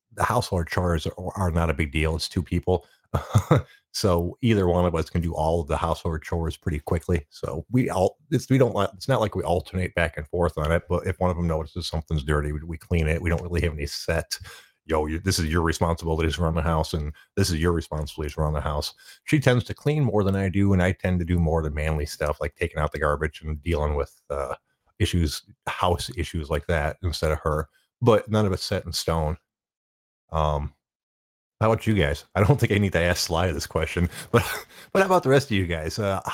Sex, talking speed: male, 240 wpm